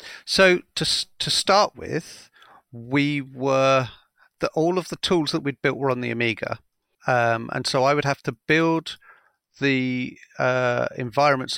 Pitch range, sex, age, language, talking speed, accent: 125-155 Hz, male, 40-59, English, 155 wpm, British